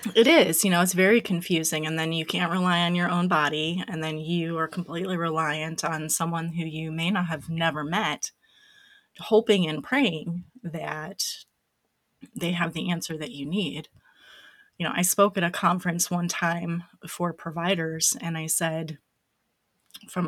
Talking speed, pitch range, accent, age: 170 wpm, 165-200 Hz, American, 30-49